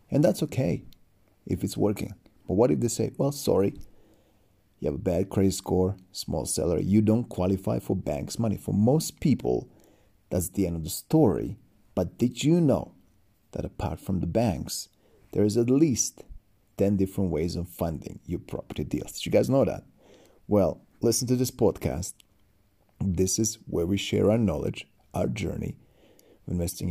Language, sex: English, male